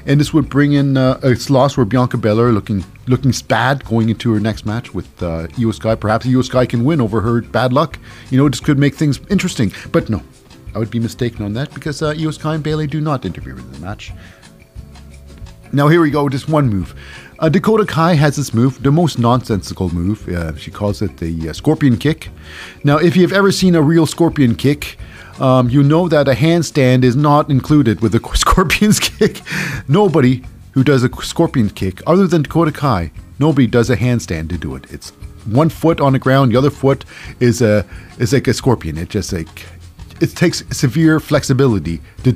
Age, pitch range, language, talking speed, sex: 40-59, 105-150 Hz, English, 205 wpm, male